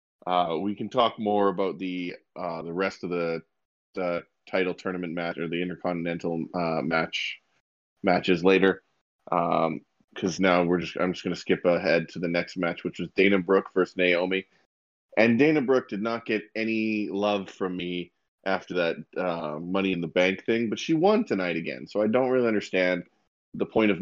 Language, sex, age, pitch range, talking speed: English, male, 20-39, 85-100 Hz, 185 wpm